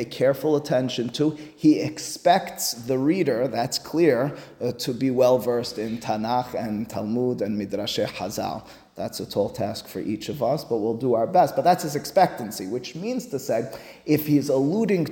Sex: male